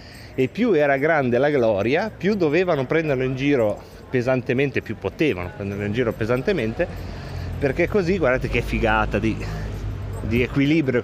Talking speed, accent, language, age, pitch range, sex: 140 wpm, native, Italian, 30-49, 115-160 Hz, male